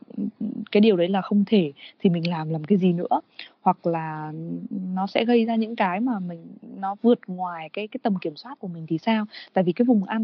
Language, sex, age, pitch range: Vietnamese, female, 20-39, 175-230 Hz